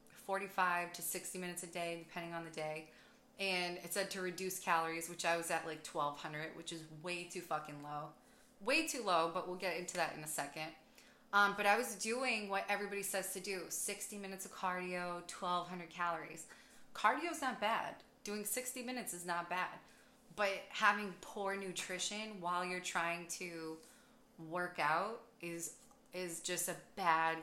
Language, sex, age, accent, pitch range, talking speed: English, female, 20-39, American, 175-225 Hz, 175 wpm